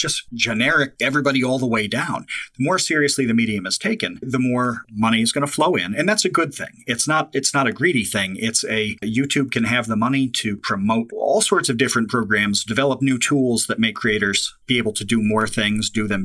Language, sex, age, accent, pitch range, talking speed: English, male, 40-59, American, 110-140 Hz, 230 wpm